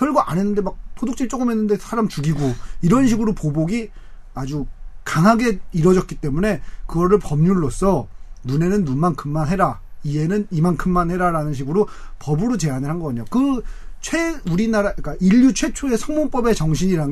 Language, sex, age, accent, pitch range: Korean, male, 30-49, native, 155-220 Hz